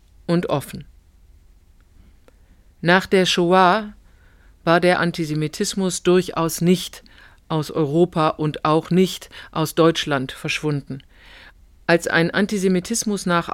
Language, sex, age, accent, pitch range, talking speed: German, female, 50-69, German, 155-190 Hz, 100 wpm